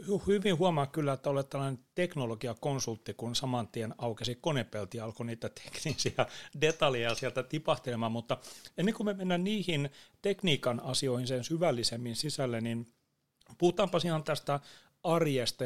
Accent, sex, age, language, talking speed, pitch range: native, male, 30-49, Finnish, 130 wpm, 120-155 Hz